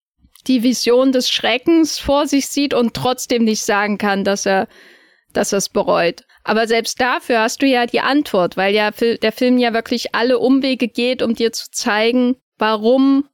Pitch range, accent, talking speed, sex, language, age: 210-250 Hz, German, 175 wpm, female, German, 10-29